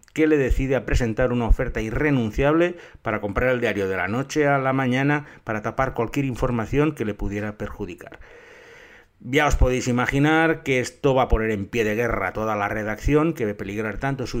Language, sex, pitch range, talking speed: Spanish, male, 110-145 Hz, 200 wpm